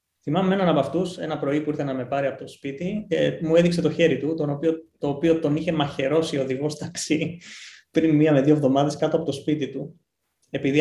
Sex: male